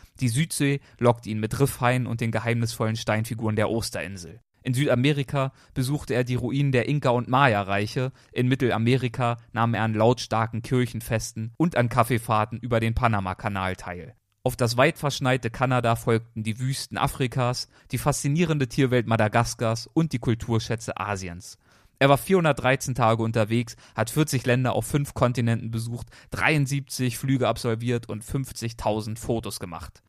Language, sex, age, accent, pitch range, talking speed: German, male, 30-49, German, 110-130 Hz, 145 wpm